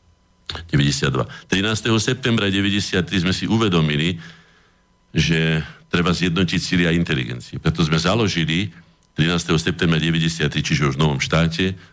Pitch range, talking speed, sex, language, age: 80-105 Hz, 120 wpm, male, Slovak, 50-69